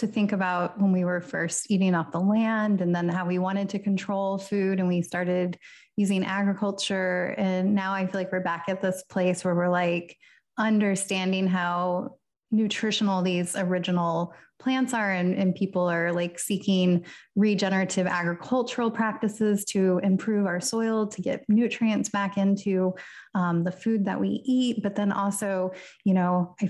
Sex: female